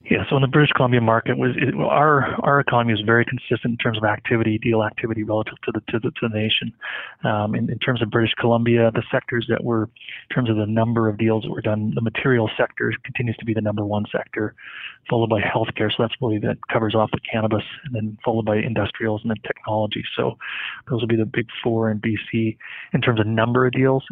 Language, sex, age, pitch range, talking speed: English, male, 30-49, 110-120 Hz, 235 wpm